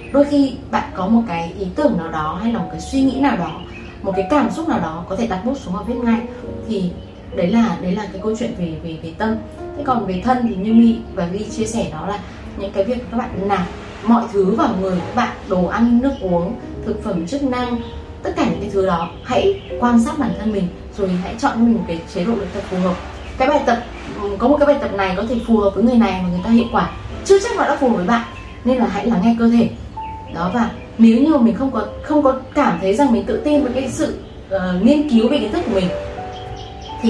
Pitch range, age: 195-255 Hz, 20-39